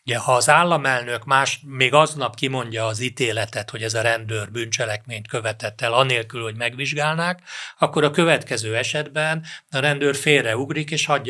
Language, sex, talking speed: Hungarian, male, 155 wpm